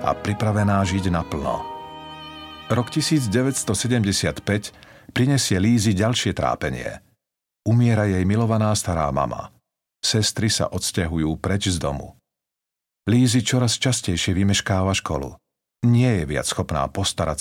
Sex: male